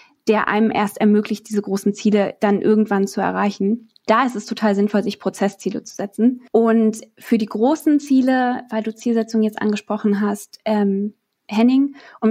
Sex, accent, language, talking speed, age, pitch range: female, German, German, 165 wpm, 20-39, 205-240 Hz